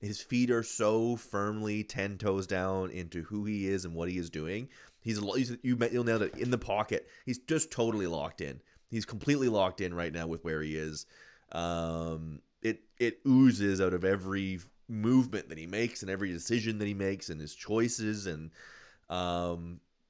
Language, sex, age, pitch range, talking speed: English, male, 30-49, 85-110 Hz, 180 wpm